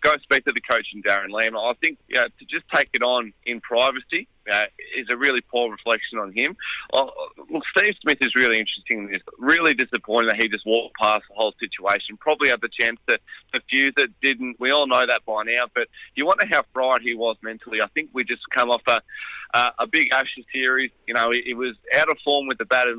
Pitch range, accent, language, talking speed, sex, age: 115-135 Hz, Australian, English, 240 wpm, male, 30-49